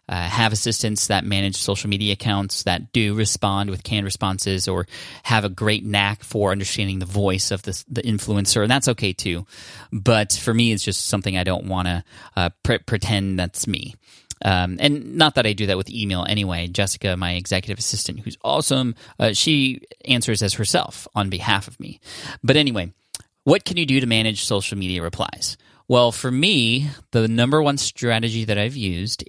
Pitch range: 95-115 Hz